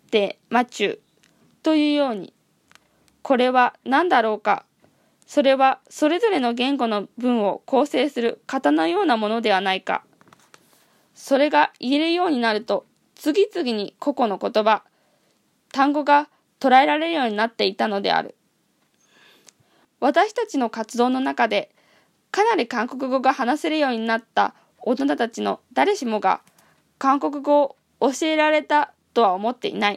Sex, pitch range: female, 225-300 Hz